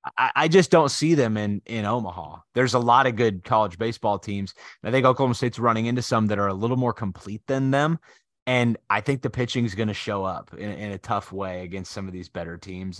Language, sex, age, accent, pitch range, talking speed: English, male, 20-39, American, 105-130 Hz, 245 wpm